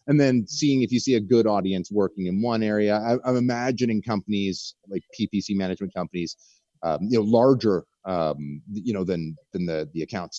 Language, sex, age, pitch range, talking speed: English, male, 30-49, 85-115 Hz, 185 wpm